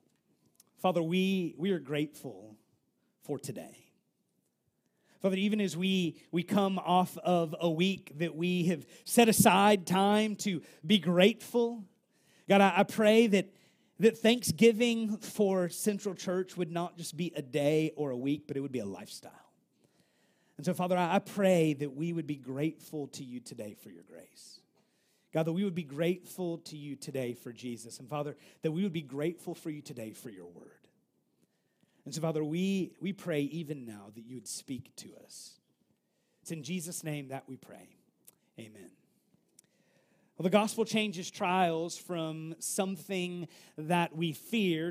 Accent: American